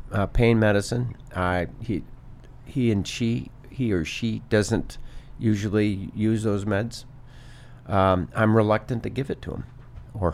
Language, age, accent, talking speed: English, 50-69, American, 145 wpm